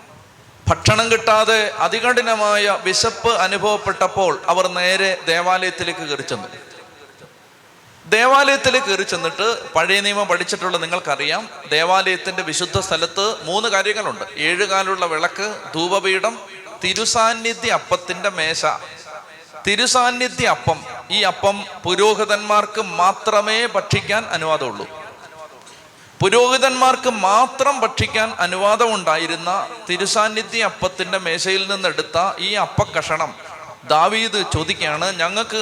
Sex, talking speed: male, 85 wpm